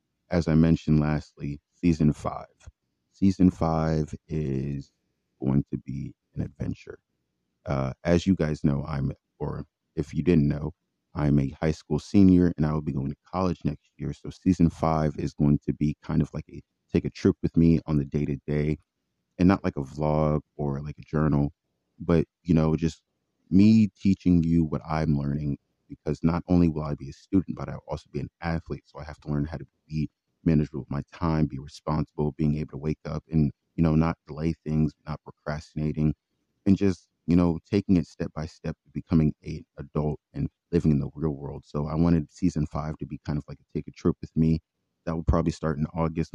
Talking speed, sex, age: 210 wpm, male, 30-49